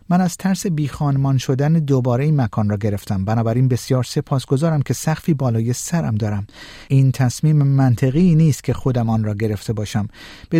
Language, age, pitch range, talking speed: Persian, 50-69, 125-150 Hz, 170 wpm